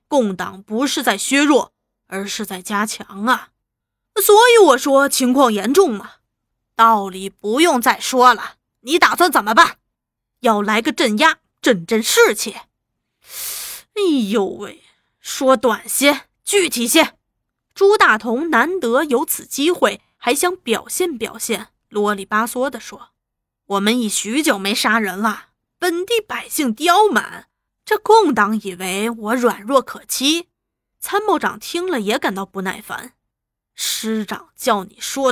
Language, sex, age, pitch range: Chinese, female, 20-39, 215-320 Hz